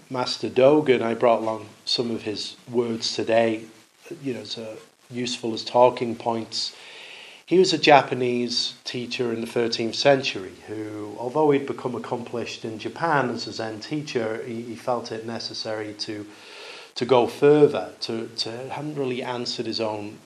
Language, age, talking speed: English, 40-59, 155 wpm